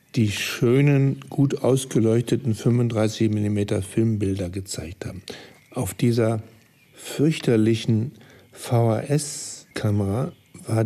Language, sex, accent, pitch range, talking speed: German, male, German, 110-135 Hz, 75 wpm